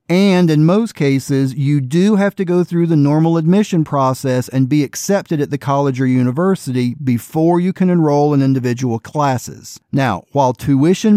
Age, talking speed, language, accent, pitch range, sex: 40-59, 170 wpm, English, American, 135-185 Hz, male